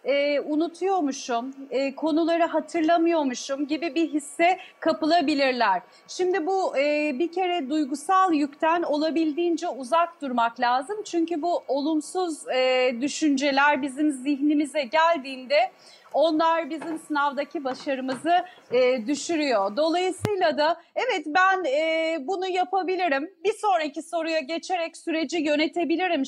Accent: native